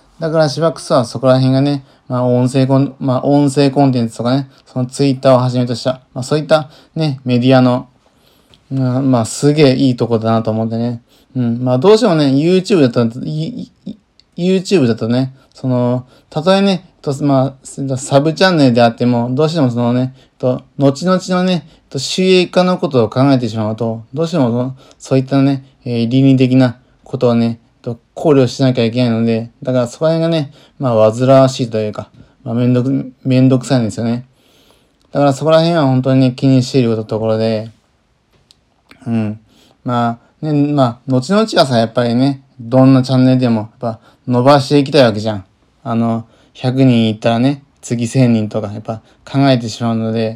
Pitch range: 120-140 Hz